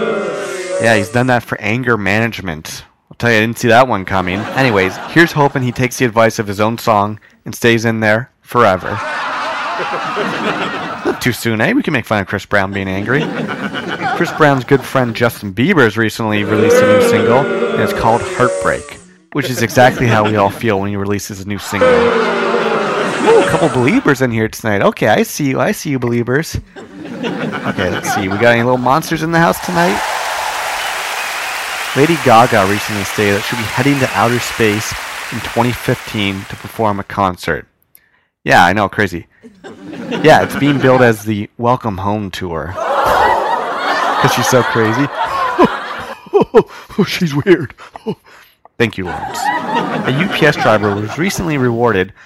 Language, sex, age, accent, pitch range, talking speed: English, male, 30-49, American, 105-140 Hz, 170 wpm